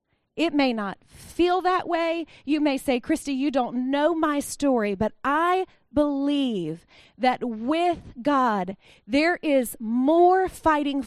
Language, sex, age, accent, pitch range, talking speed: English, female, 30-49, American, 230-305 Hz, 135 wpm